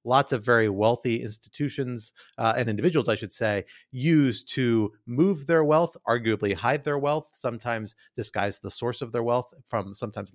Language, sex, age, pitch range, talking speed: English, male, 30-49, 105-140 Hz, 170 wpm